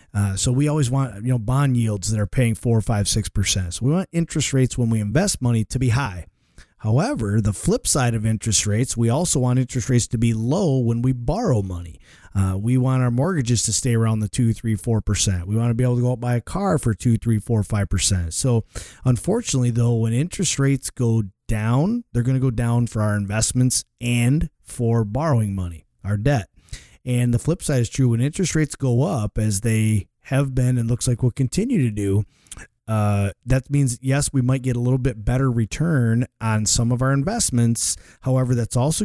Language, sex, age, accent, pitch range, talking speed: English, male, 30-49, American, 105-130 Hz, 220 wpm